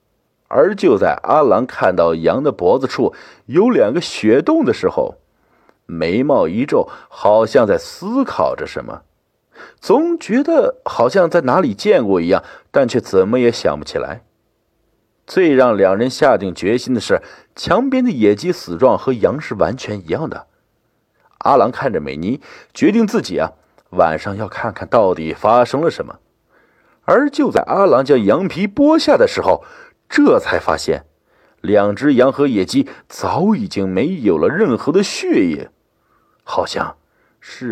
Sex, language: male, Chinese